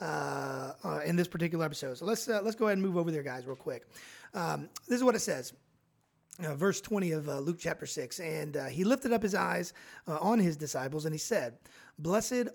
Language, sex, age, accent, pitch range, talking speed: English, male, 30-49, American, 160-220 Hz, 230 wpm